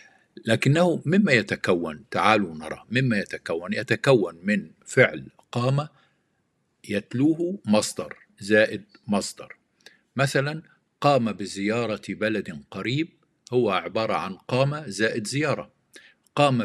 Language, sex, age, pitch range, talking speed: Arabic, male, 50-69, 105-140 Hz, 95 wpm